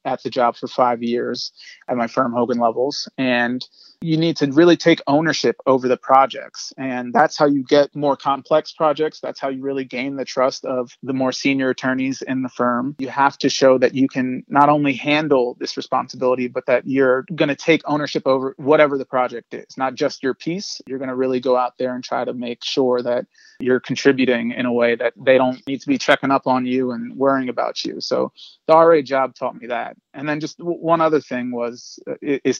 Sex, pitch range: male, 125-140 Hz